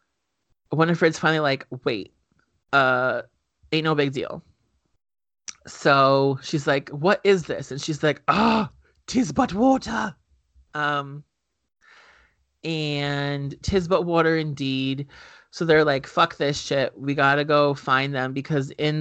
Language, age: English, 30-49